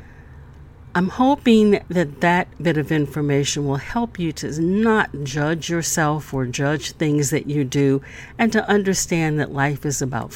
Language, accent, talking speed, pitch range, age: English, American, 155 wpm, 135-190 Hz, 50-69